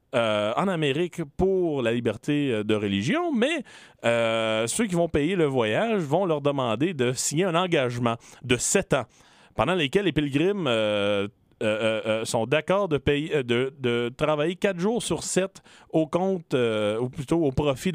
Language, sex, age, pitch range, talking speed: French, male, 40-59, 120-170 Hz, 175 wpm